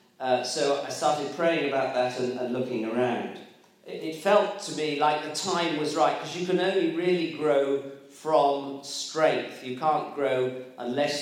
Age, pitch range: 40-59, 130-180 Hz